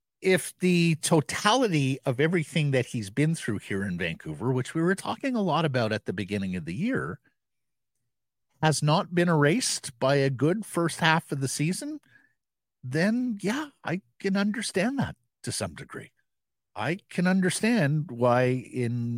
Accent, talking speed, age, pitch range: American, 160 wpm, 50-69, 110-165 Hz